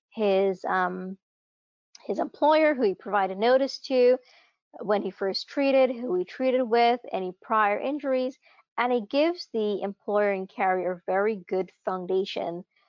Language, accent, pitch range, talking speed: English, American, 190-250 Hz, 140 wpm